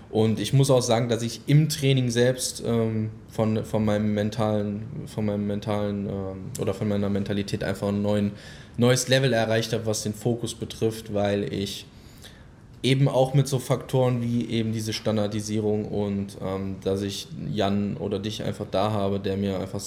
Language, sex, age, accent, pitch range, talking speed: German, male, 10-29, German, 100-115 Hz, 145 wpm